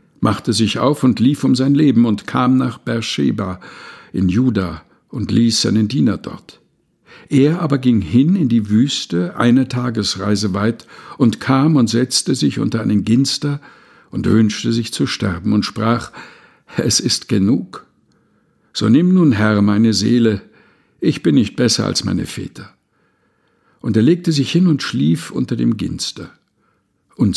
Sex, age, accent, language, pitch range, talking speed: male, 60-79, German, German, 110-140 Hz, 155 wpm